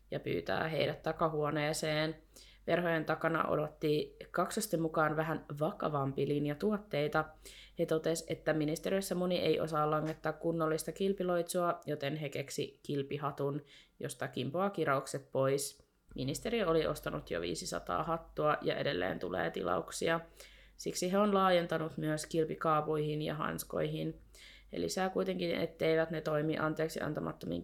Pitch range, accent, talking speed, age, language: 150-170 Hz, native, 120 wpm, 20-39, Finnish